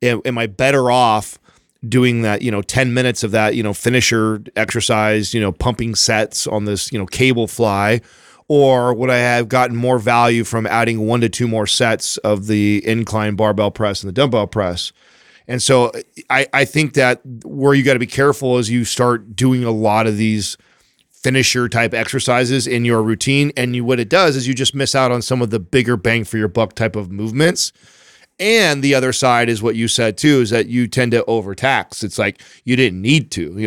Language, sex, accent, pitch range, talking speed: English, male, American, 110-125 Hz, 210 wpm